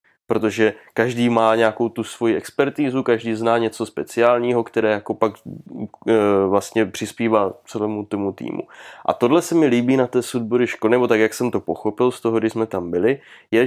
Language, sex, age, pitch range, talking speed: Czech, male, 20-39, 110-135 Hz, 180 wpm